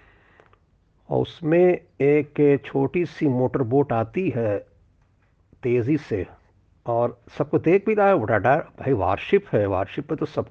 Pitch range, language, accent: 105-130 Hz, Hindi, native